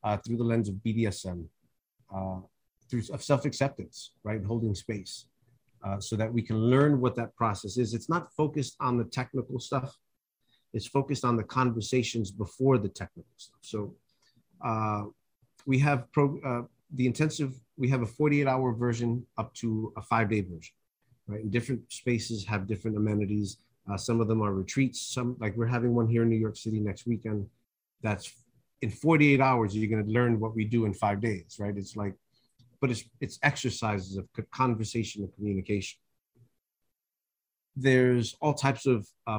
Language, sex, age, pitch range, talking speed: English, male, 30-49, 105-130 Hz, 165 wpm